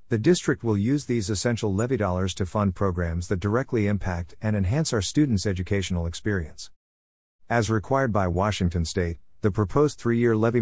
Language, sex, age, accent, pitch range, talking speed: English, male, 50-69, American, 90-115 Hz, 165 wpm